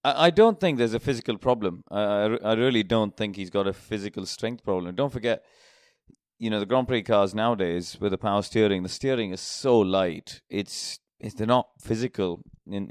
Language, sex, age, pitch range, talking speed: English, male, 30-49, 95-110 Hz, 195 wpm